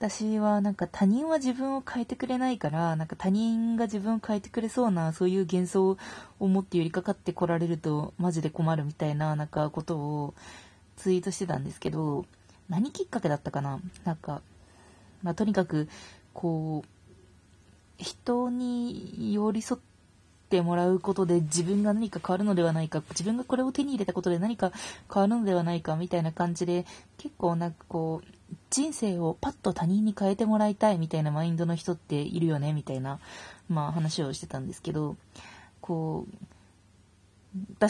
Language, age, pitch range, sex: Japanese, 20-39, 150-205 Hz, female